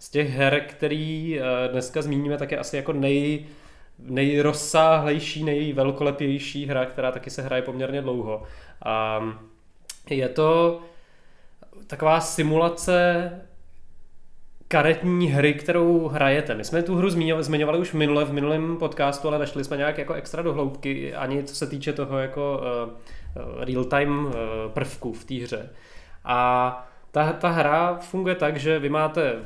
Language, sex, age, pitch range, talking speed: Czech, male, 20-39, 125-150 Hz, 135 wpm